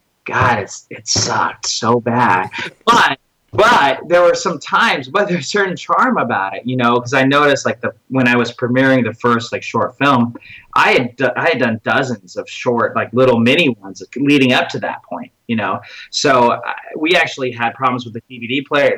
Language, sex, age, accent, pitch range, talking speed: English, male, 30-49, American, 115-135 Hz, 205 wpm